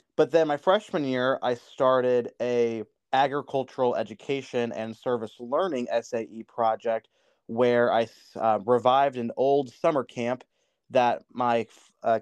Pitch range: 115-130 Hz